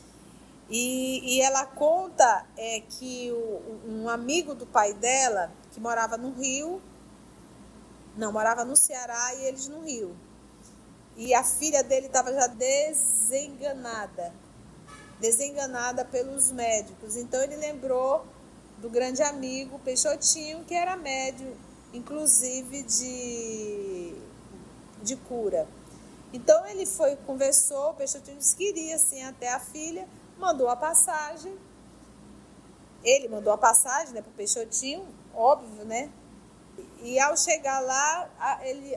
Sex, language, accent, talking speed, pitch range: female, Portuguese, Brazilian, 120 wpm, 240-295 Hz